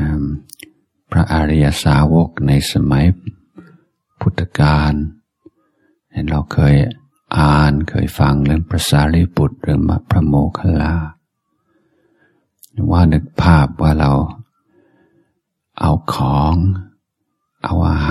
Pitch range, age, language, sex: 75-95 Hz, 50-69, Thai, male